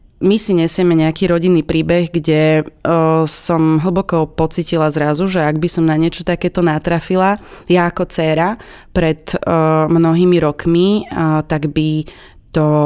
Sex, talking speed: female, 145 wpm